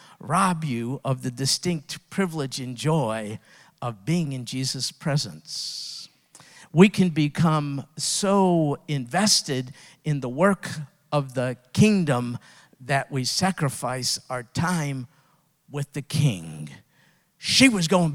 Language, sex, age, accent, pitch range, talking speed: English, male, 50-69, American, 140-180 Hz, 115 wpm